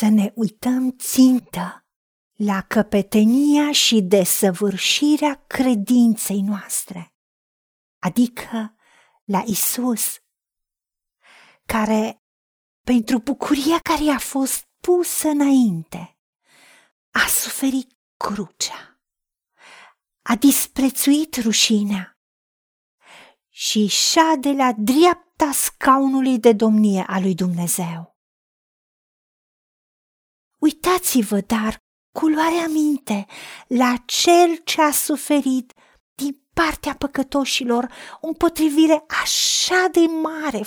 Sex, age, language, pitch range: female, 40-59, Romanian, 215-290 Hz